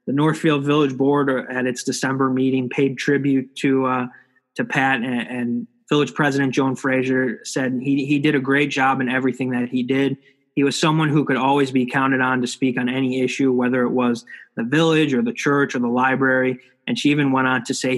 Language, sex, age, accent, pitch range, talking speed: English, male, 20-39, American, 130-140 Hz, 215 wpm